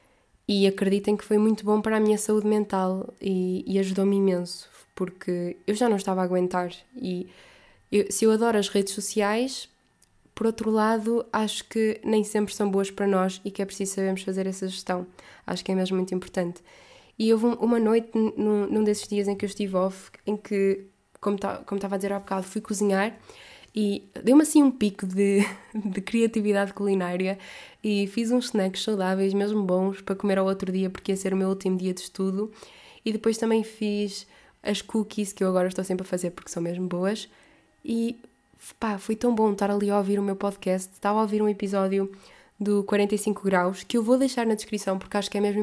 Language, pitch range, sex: Portuguese, 190-215 Hz, female